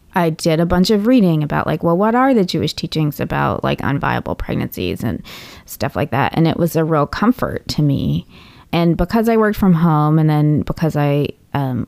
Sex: female